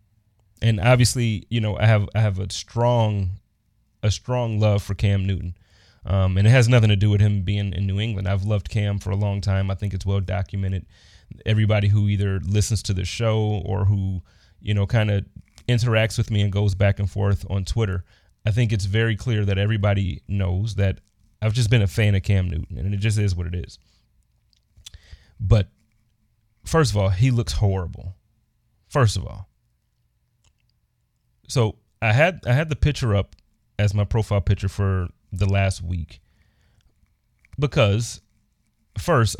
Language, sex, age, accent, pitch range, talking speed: English, male, 30-49, American, 95-110 Hz, 175 wpm